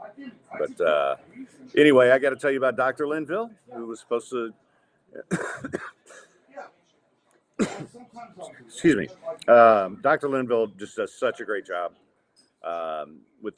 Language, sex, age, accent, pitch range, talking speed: English, male, 50-69, American, 110-160 Hz, 125 wpm